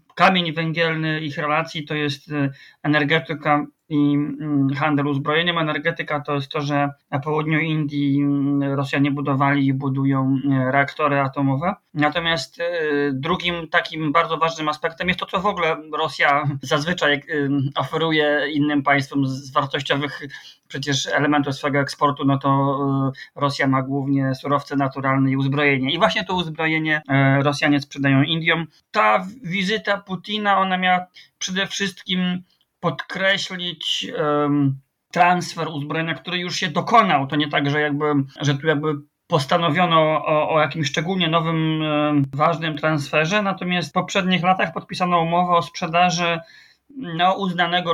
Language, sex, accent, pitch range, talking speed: Polish, male, native, 140-170 Hz, 130 wpm